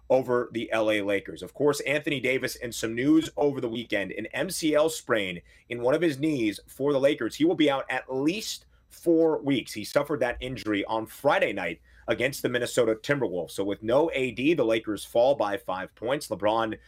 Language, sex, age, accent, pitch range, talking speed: English, male, 30-49, American, 120-155 Hz, 195 wpm